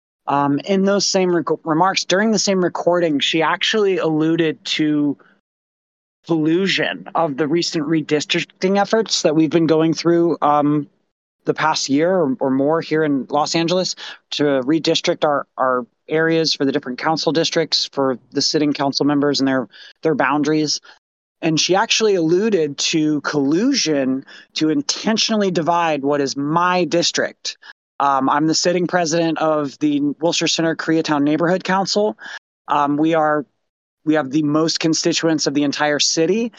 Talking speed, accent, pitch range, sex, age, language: 150 wpm, American, 150-175 Hz, male, 30-49, English